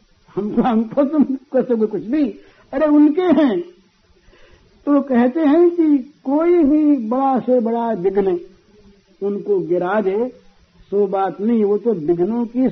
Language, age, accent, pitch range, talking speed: Hindi, 60-79, native, 185-270 Hz, 135 wpm